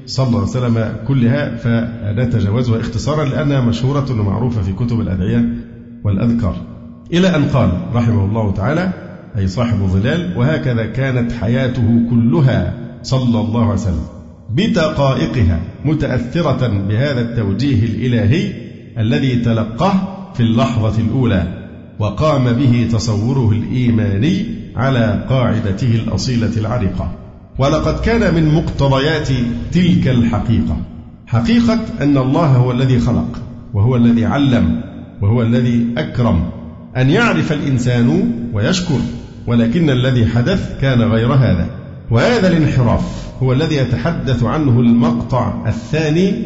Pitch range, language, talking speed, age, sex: 110-130 Hz, Arabic, 110 wpm, 50-69, male